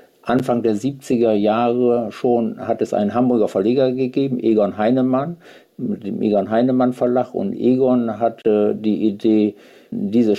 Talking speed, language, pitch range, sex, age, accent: 140 wpm, German, 95-120 Hz, male, 60-79, German